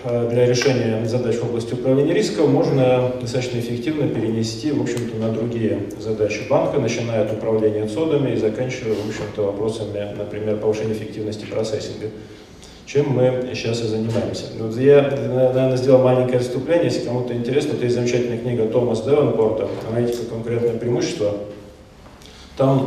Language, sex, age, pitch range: Russian, male, 40-59, 110-125 Hz